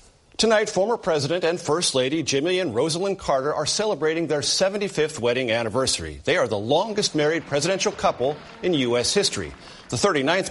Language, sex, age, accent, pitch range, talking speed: English, male, 50-69, American, 130-180 Hz, 160 wpm